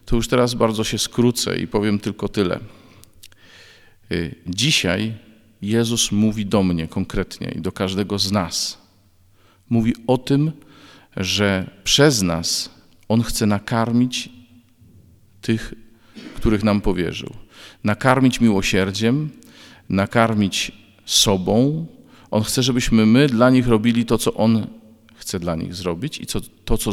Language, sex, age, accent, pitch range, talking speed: Polish, male, 40-59, native, 100-120 Hz, 125 wpm